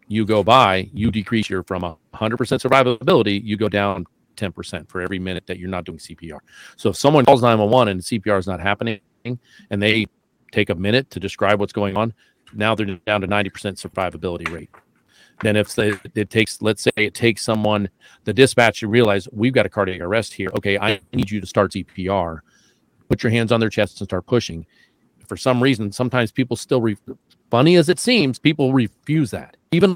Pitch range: 95-115 Hz